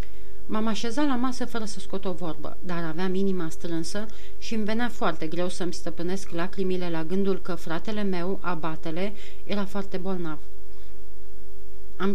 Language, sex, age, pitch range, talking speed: Romanian, female, 30-49, 175-205 Hz, 155 wpm